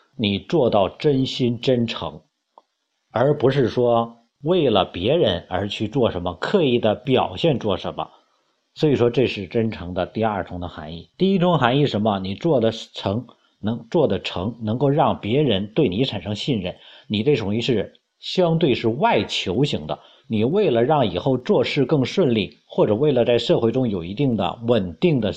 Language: Chinese